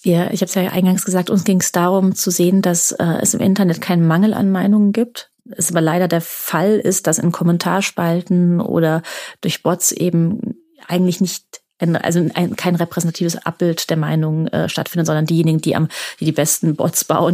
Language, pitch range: German, 160-190 Hz